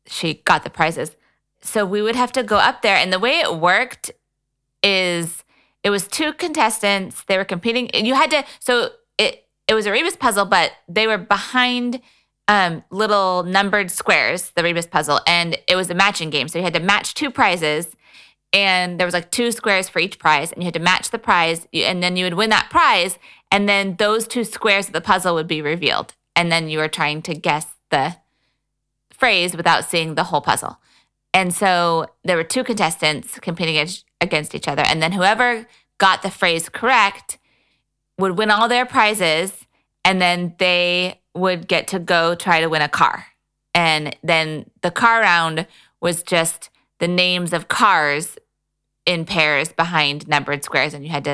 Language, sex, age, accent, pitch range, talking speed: English, female, 20-39, American, 160-205 Hz, 185 wpm